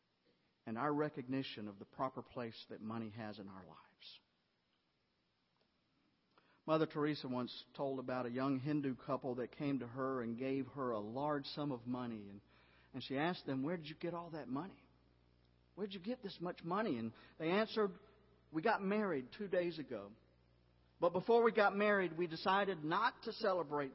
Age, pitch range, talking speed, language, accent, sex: 50-69, 115-190 Hz, 180 wpm, English, American, male